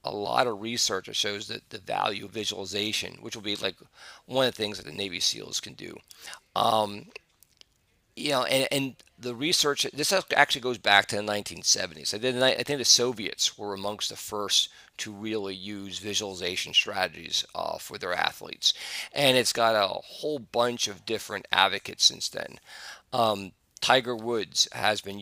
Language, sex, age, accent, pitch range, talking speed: English, male, 40-59, American, 100-120 Hz, 165 wpm